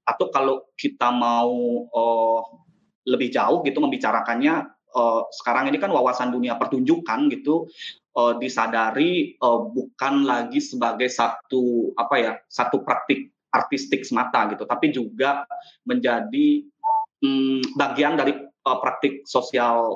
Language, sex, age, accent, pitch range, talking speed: English, male, 20-39, Indonesian, 120-165 Hz, 120 wpm